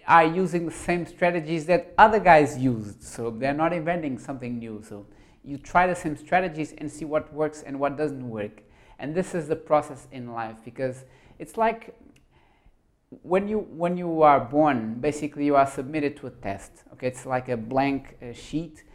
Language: English